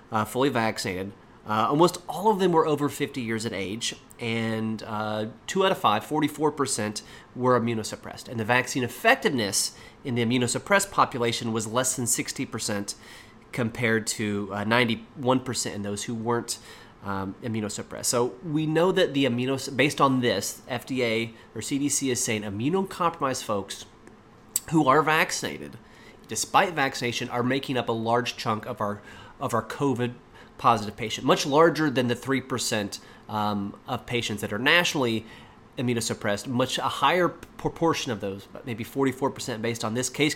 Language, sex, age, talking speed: English, male, 30-49, 155 wpm